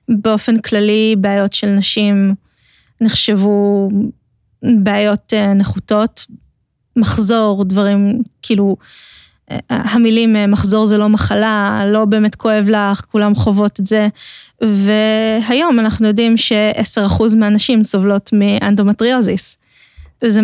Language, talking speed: Hebrew, 95 wpm